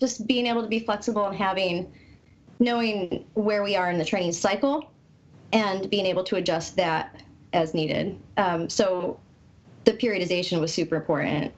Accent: American